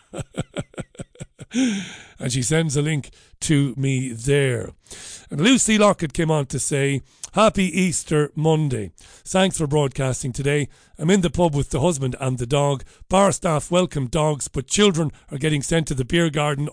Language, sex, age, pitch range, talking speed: English, male, 40-59, 135-175 Hz, 160 wpm